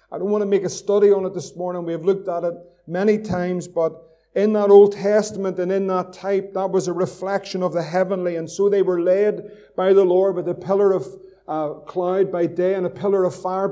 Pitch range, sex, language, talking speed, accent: 180-200 Hz, male, English, 240 wpm, Irish